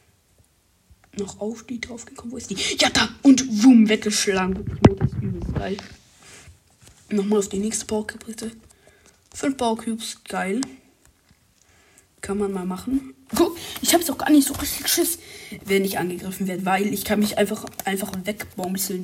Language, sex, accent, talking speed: German, female, German, 145 wpm